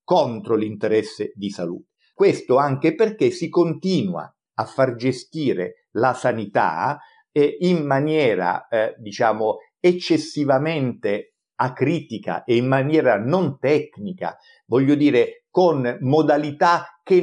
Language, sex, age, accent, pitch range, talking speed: Italian, male, 50-69, native, 120-180 Hz, 110 wpm